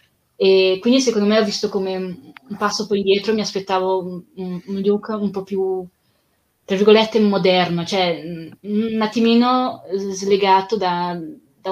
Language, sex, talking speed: Italian, female, 150 wpm